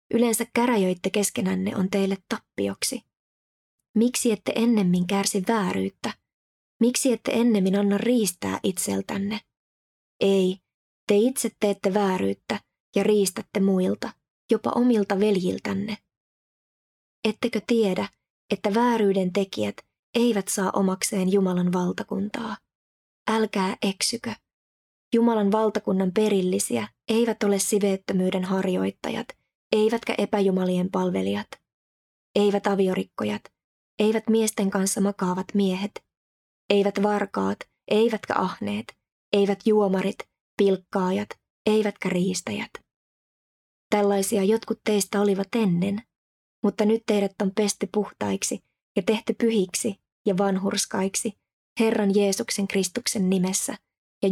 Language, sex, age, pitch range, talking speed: Finnish, female, 20-39, 190-215 Hz, 95 wpm